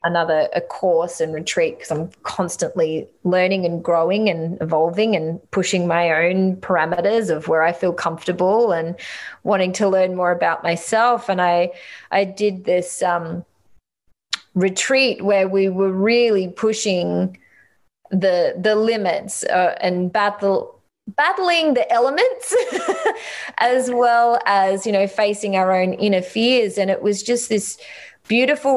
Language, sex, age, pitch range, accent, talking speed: English, female, 20-39, 175-205 Hz, Australian, 140 wpm